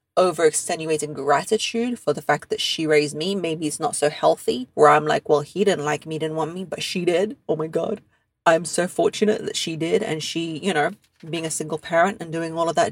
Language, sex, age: English, female, 30-49